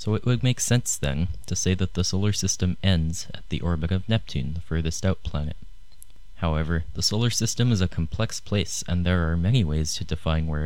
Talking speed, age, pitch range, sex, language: 215 wpm, 20-39, 85-100 Hz, male, English